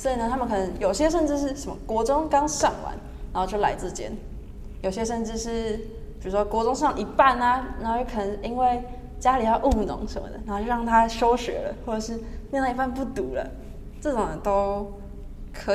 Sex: female